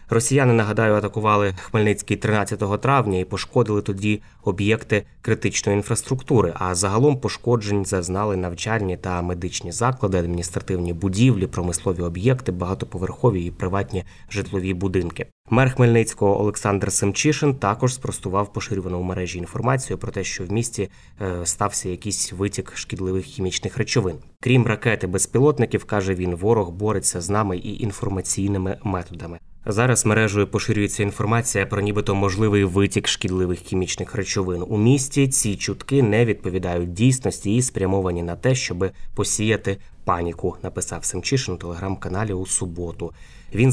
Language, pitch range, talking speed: Ukrainian, 90-110 Hz, 130 wpm